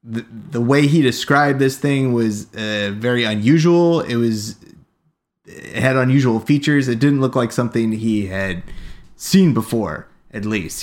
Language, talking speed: English, 155 wpm